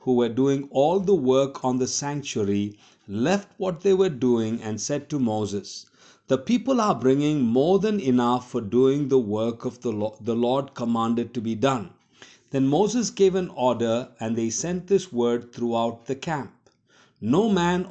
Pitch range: 120-155 Hz